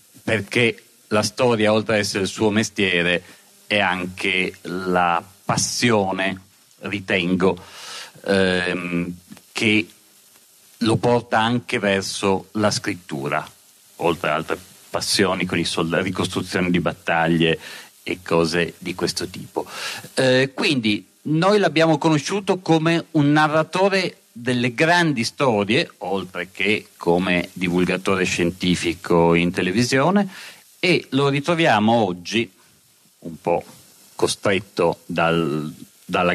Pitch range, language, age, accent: 90-150 Hz, Italian, 40-59, native